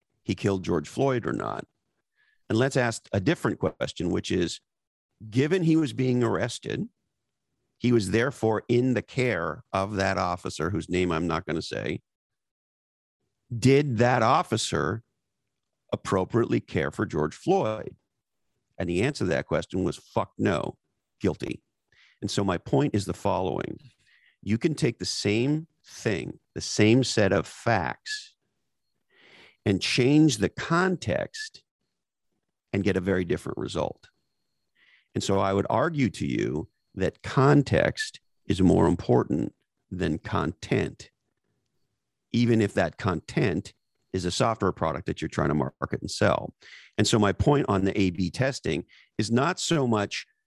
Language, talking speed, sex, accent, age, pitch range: English, 145 wpm, male, American, 50-69, 95-125 Hz